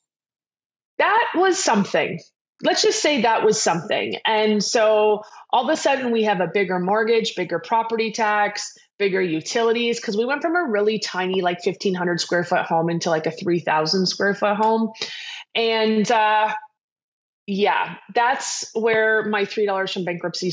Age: 20-39